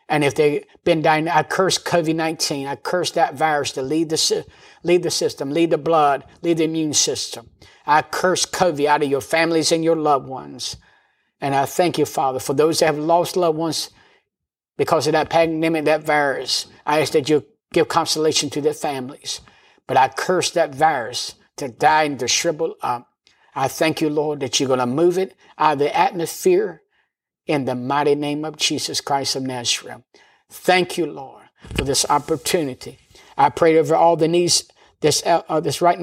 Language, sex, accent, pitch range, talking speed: English, male, American, 140-165 Hz, 185 wpm